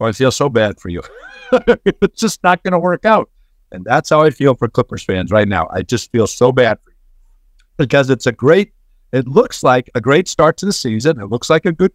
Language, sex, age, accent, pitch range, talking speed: English, male, 50-69, American, 125-165 Hz, 245 wpm